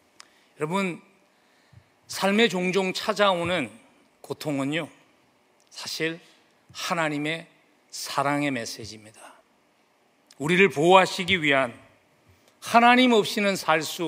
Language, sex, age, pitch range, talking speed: English, male, 40-59, 150-225 Hz, 65 wpm